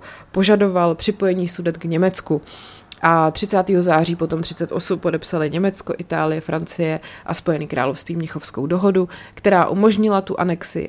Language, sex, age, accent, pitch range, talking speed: Czech, female, 30-49, native, 155-180 Hz, 125 wpm